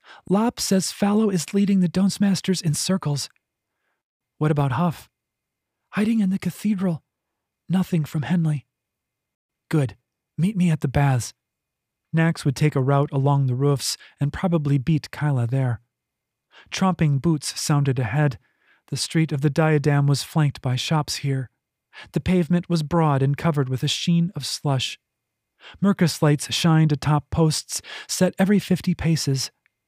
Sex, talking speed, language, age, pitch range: male, 145 wpm, English, 30-49, 135-170 Hz